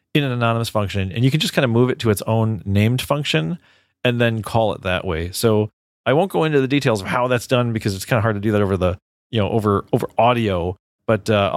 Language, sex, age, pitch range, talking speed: English, male, 40-59, 105-125 Hz, 265 wpm